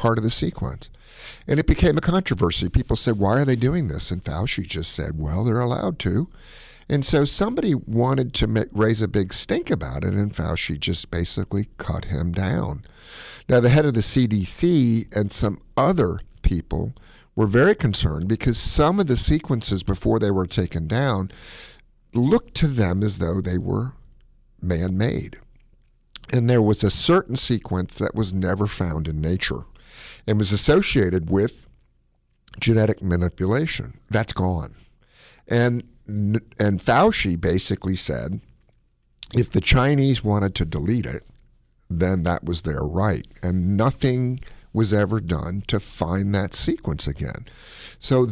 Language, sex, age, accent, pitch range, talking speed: English, male, 50-69, American, 90-120 Hz, 150 wpm